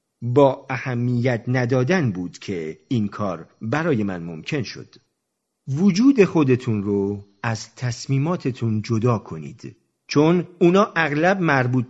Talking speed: 110 wpm